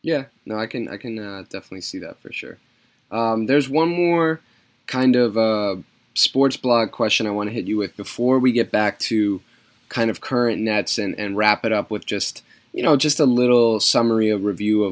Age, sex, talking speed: 10-29, male, 210 wpm